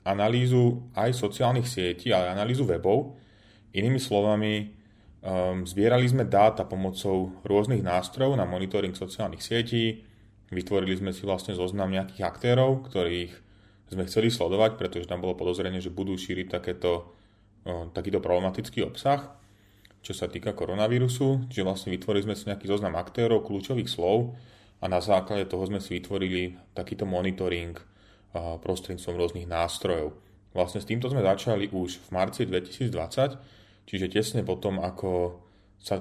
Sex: male